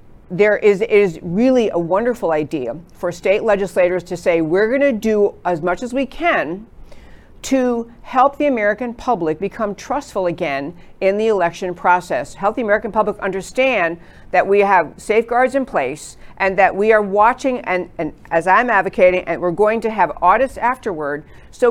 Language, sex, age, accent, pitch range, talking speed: English, female, 50-69, American, 175-225 Hz, 170 wpm